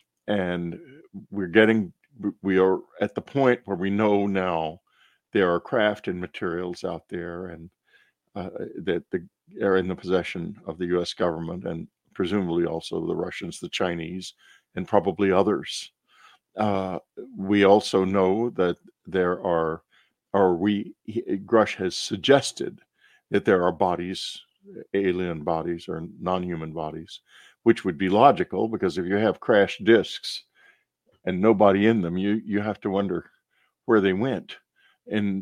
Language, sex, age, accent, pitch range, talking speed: English, male, 50-69, American, 90-105 Hz, 145 wpm